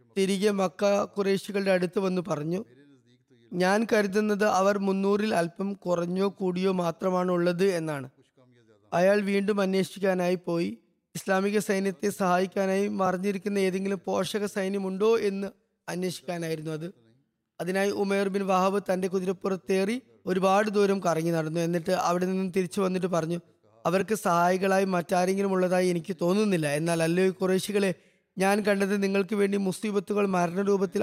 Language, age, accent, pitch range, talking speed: Malayalam, 20-39, native, 175-200 Hz, 120 wpm